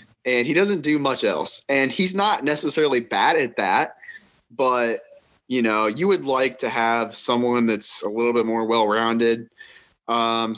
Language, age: English, 20-39